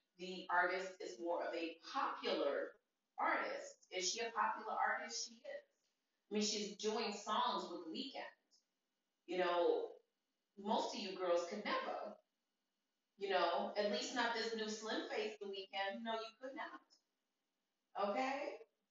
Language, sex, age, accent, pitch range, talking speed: English, female, 30-49, American, 205-270 Hz, 145 wpm